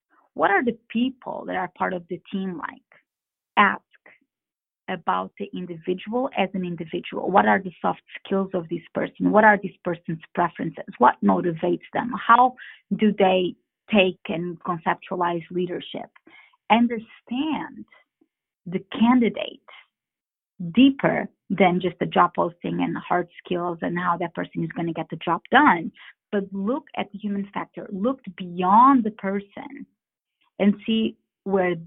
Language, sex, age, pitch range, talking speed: English, female, 30-49, 185-250 Hz, 145 wpm